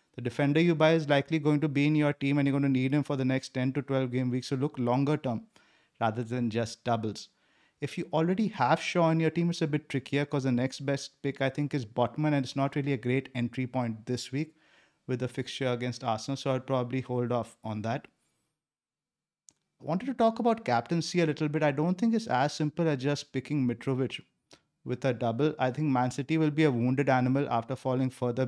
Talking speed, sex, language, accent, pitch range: 235 wpm, male, English, Indian, 125-150 Hz